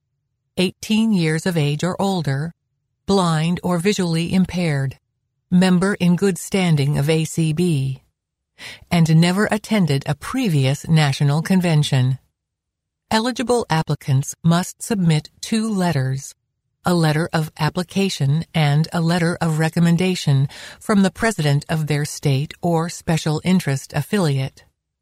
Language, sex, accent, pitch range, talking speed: English, female, American, 140-180 Hz, 115 wpm